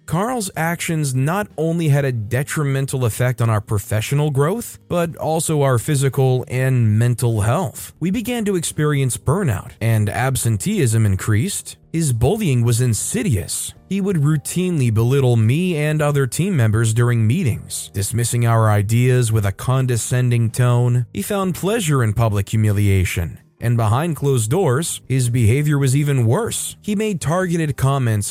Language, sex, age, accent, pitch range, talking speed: English, male, 30-49, American, 115-155 Hz, 145 wpm